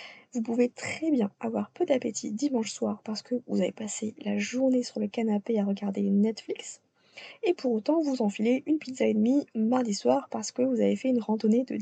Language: French